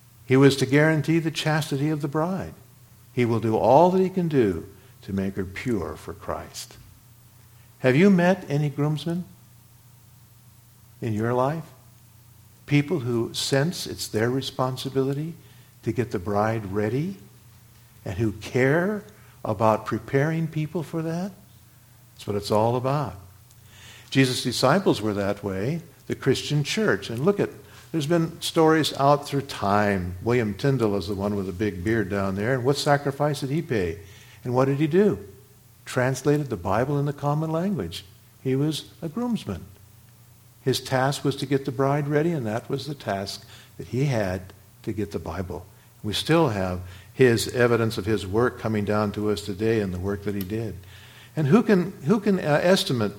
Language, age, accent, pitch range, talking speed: English, 50-69, American, 105-145 Hz, 170 wpm